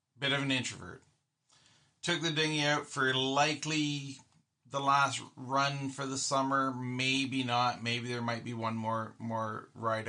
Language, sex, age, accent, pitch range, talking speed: English, male, 40-59, American, 115-140 Hz, 155 wpm